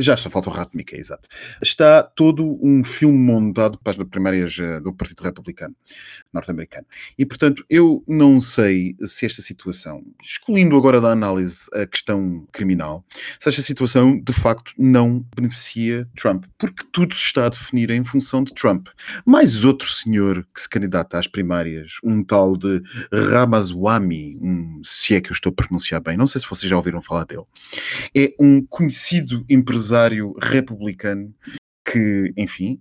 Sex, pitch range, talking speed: male, 95-130 Hz, 160 wpm